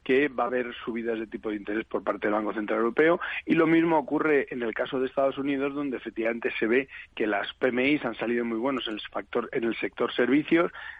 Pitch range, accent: 115-140 Hz, Spanish